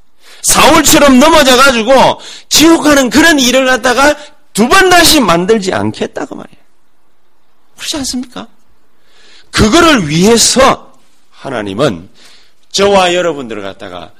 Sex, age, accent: male, 30-49, native